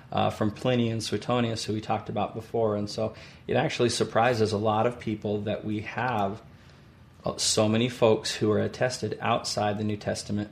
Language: English